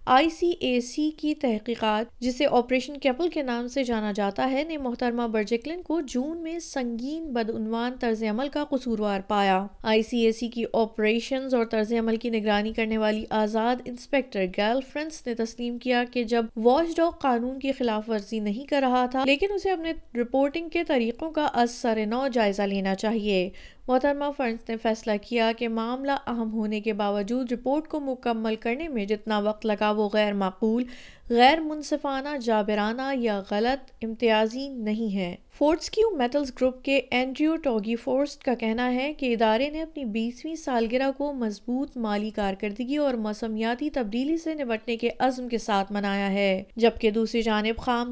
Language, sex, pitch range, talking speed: Urdu, female, 220-275 Hz, 170 wpm